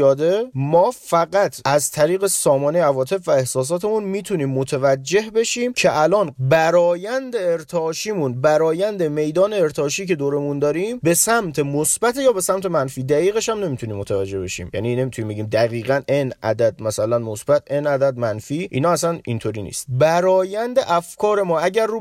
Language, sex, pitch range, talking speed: Persian, male, 135-190 Hz, 145 wpm